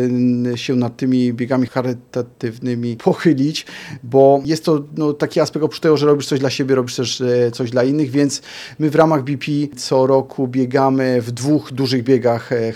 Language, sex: Polish, male